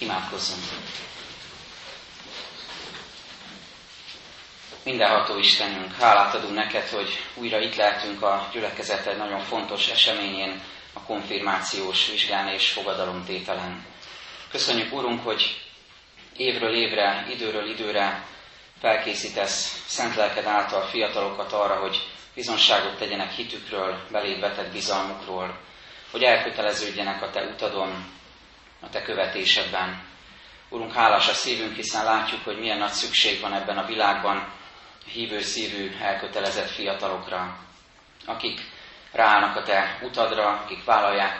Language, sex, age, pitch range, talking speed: Hungarian, male, 30-49, 95-110 Hz, 105 wpm